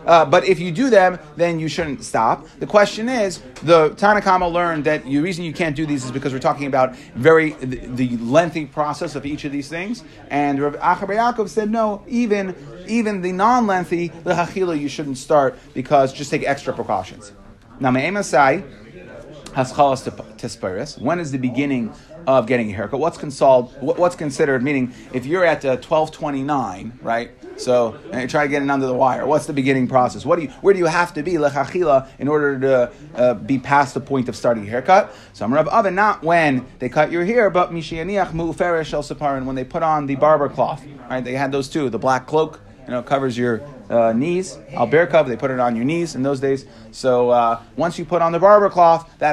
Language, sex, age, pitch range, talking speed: English, male, 30-49, 130-170 Hz, 200 wpm